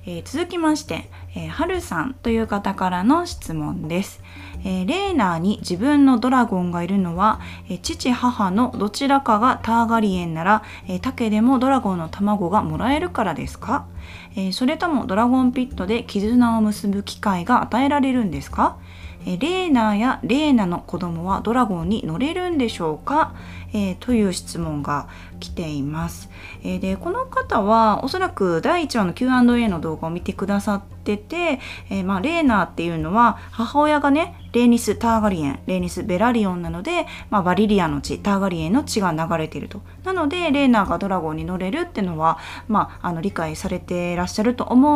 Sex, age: female, 20-39